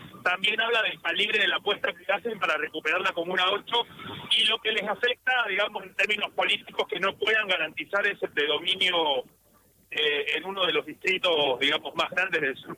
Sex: male